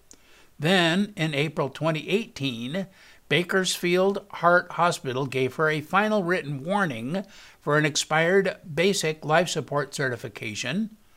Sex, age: male, 60-79